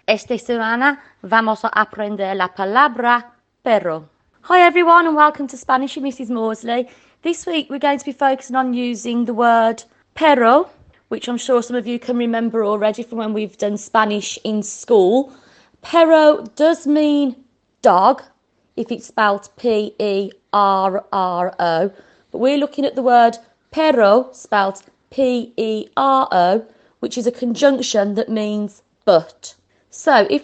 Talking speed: 140 wpm